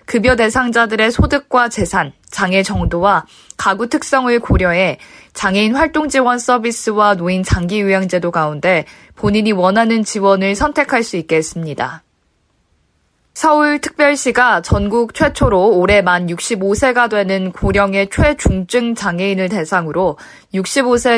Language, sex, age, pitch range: Korean, female, 20-39, 190-250 Hz